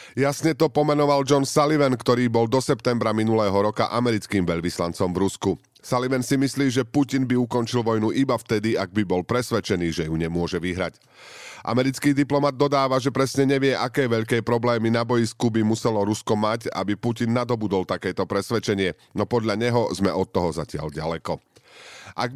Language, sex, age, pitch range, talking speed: Slovak, male, 40-59, 105-135 Hz, 165 wpm